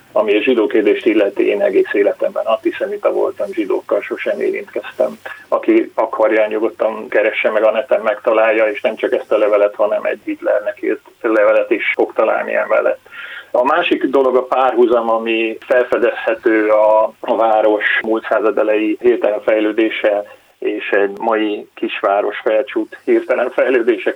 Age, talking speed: 30-49, 145 wpm